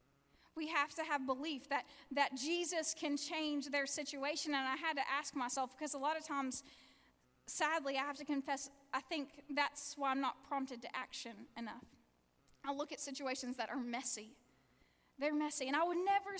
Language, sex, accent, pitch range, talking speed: English, female, American, 255-300 Hz, 185 wpm